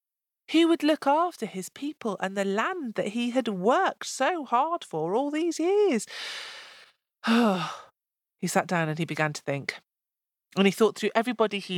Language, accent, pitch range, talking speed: English, British, 170-275 Hz, 170 wpm